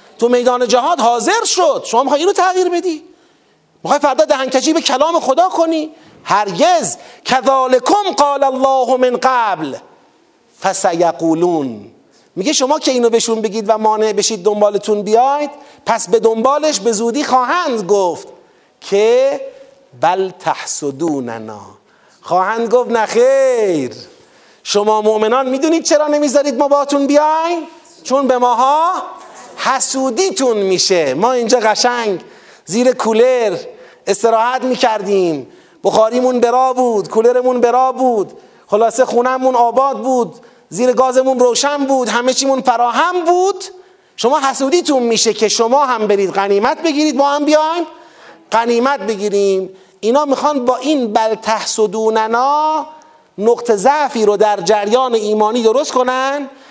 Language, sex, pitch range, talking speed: Persian, male, 220-290 Hz, 120 wpm